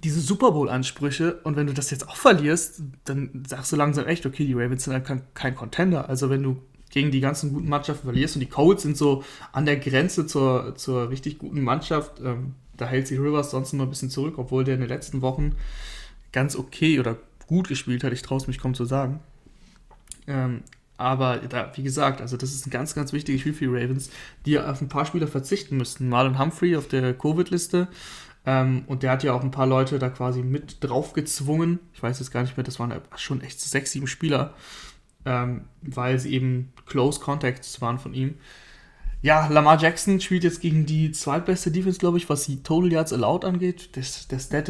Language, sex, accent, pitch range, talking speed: German, male, German, 130-150 Hz, 210 wpm